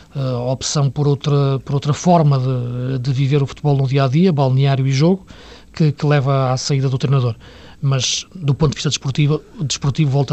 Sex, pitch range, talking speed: male, 125-155 Hz, 200 wpm